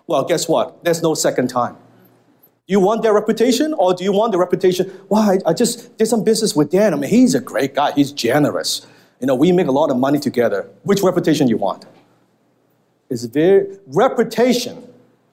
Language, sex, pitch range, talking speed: English, male, 145-210 Hz, 205 wpm